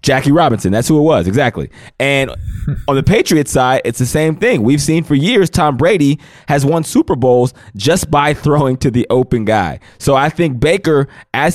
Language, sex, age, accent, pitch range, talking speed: English, male, 20-39, American, 110-150 Hz, 195 wpm